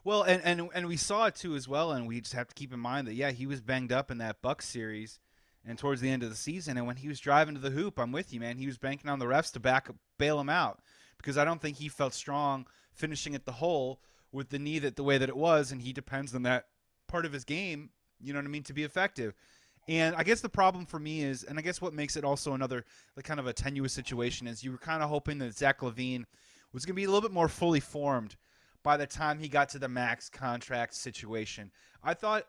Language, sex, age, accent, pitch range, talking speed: English, male, 30-49, American, 130-160 Hz, 275 wpm